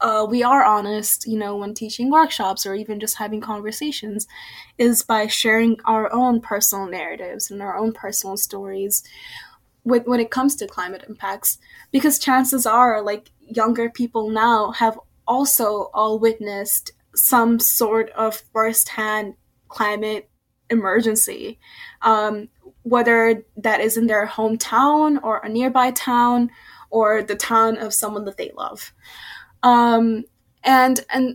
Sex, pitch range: female, 215-250 Hz